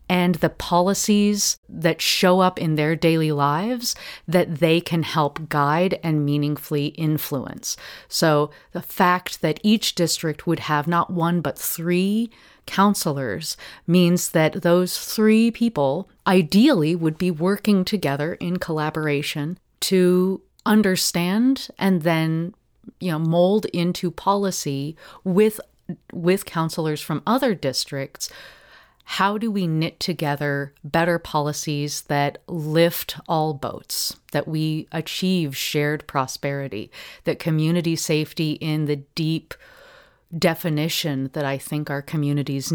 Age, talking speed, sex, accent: 30-49, 120 wpm, female, American